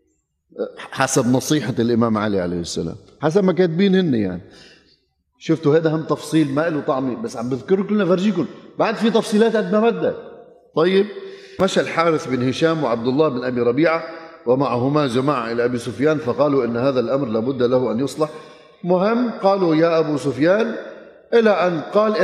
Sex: male